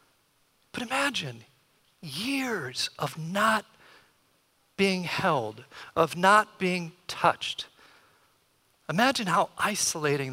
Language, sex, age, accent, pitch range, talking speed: English, male, 50-69, American, 150-210 Hz, 80 wpm